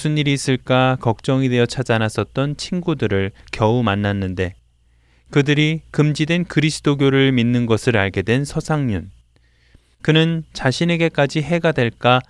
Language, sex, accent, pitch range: Korean, male, native, 100-145 Hz